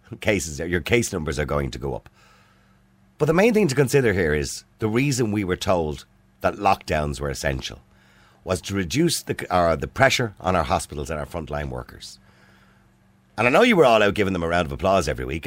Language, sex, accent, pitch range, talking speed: English, male, Irish, 80-120 Hz, 215 wpm